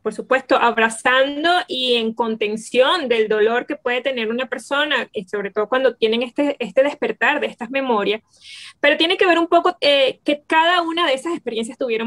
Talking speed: 190 wpm